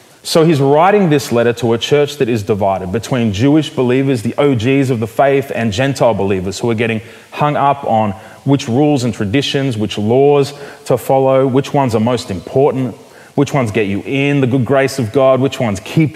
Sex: male